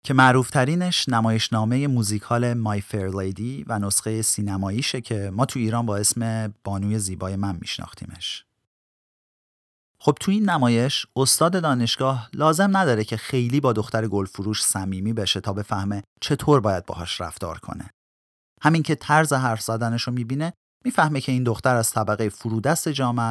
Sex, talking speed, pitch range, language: male, 150 wpm, 105-135 Hz, Persian